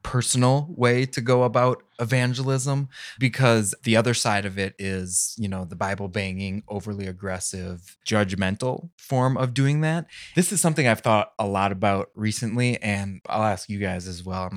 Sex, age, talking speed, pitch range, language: male, 20-39, 170 wpm, 100-120 Hz, English